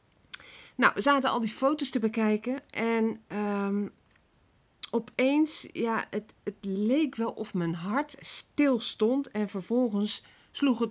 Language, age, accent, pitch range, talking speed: Dutch, 40-59, Dutch, 170-220 Hz, 125 wpm